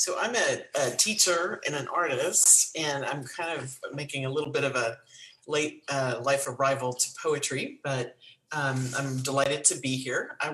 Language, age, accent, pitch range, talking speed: English, 40-59, American, 130-155 Hz, 180 wpm